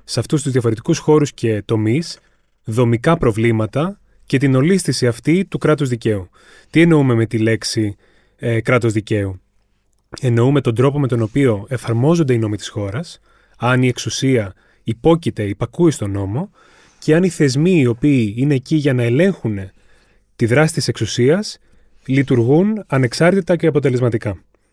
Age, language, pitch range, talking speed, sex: 30-49, Greek, 115-155 Hz, 150 wpm, male